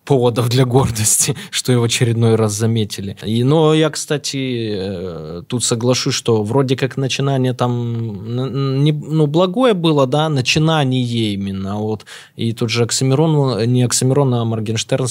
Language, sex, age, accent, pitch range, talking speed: Russian, male, 20-39, native, 115-140 Hz, 145 wpm